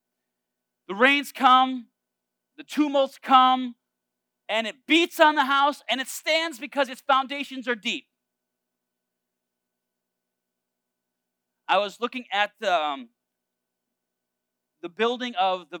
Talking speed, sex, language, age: 110 wpm, male, English, 30-49